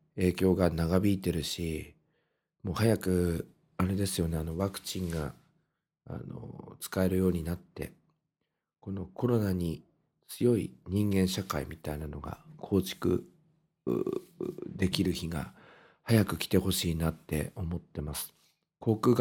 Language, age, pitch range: Japanese, 50-69, 90-125 Hz